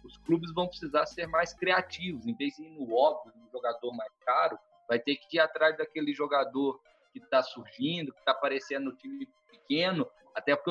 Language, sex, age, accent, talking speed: Portuguese, male, 20-39, Brazilian, 195 wpm